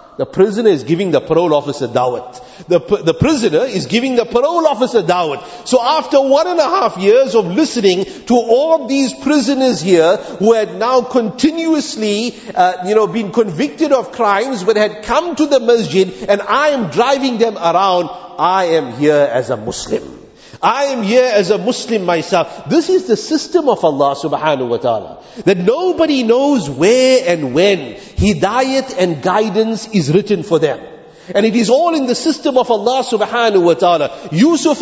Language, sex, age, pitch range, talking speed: English, male, 50-69, 195-265 Hz, 175 wpm